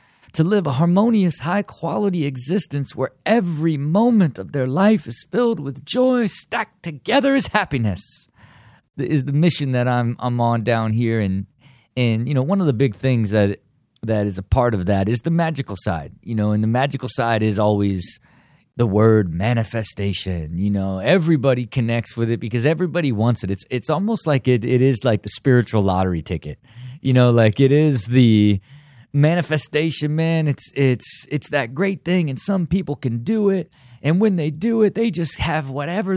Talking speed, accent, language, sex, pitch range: 185 wpm, American, English, male, 110-155 Hz